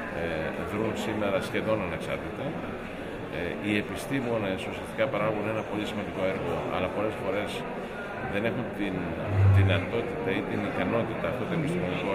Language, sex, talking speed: Greek, male, 140 wpm